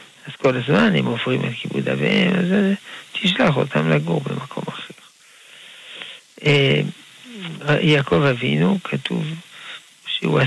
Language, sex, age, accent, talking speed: Hebrew, male, 50-69, Italian, 110 wpm